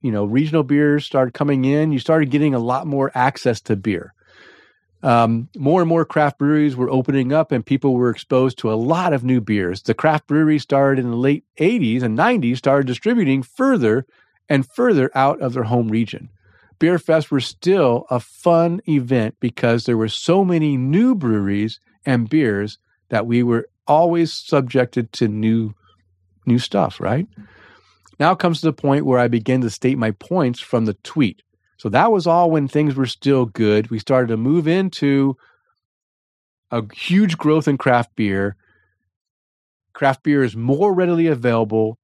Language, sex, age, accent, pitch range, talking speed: English, male, 40-59, American, 110-145 Hz, 175 wpm